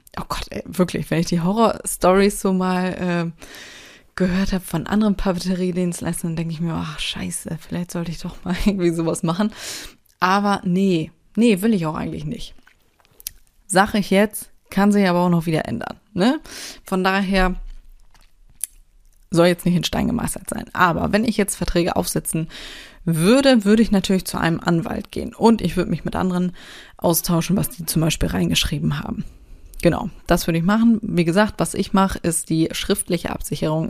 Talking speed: 175 wpm